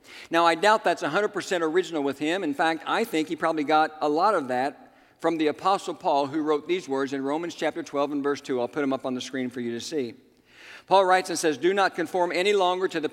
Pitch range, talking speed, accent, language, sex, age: 140-190 Hz, 255 wpm, American, English, male, 50-69